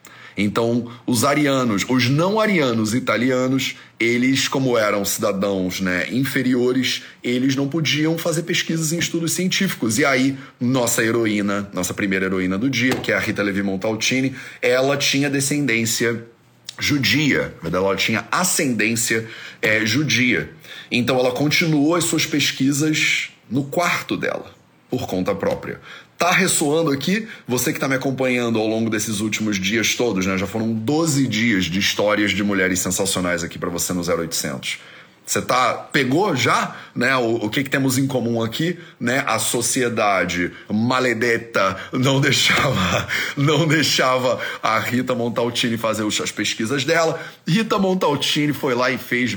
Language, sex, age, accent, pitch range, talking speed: Portuguese, male, 30-49, Brazilian, 110-145 Hz, 145 wpm